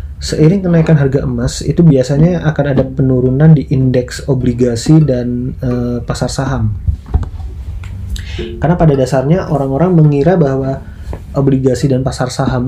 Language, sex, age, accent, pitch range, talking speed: Indonesian, male, 20-39, native, 120-140 Hz, 125 wpm